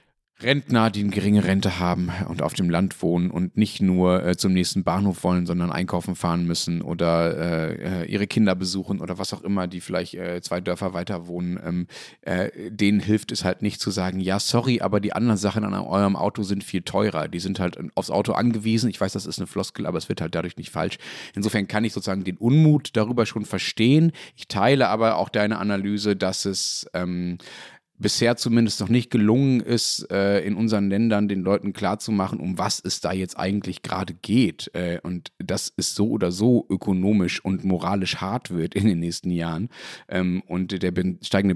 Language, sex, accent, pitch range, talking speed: German, male, German, 90-110 Hz, 200 wpm